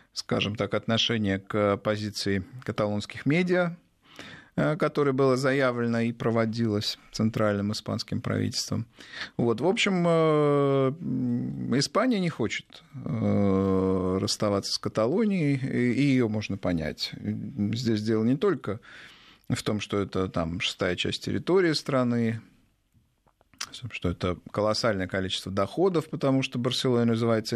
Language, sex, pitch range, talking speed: Russian, male, 105-135 Hz, 110 wpm